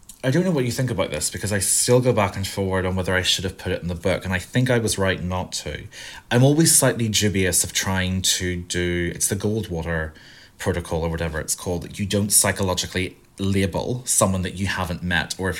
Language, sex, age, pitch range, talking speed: English, male, 30-49, 90-110 Hz, 235 wpm